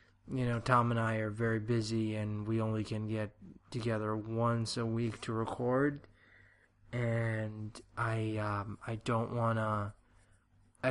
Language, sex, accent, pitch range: English, male, American, 110-125 Hz